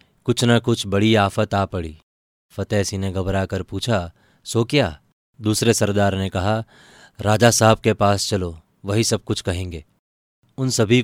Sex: male